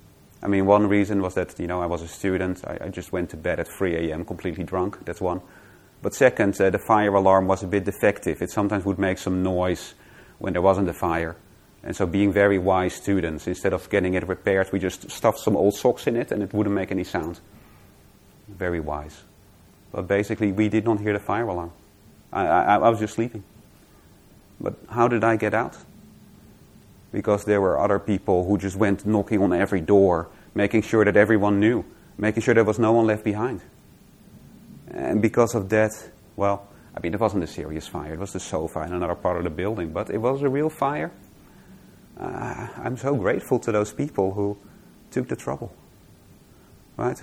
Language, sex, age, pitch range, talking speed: English, male, 30-49, 95-110 Hz, 200 wpm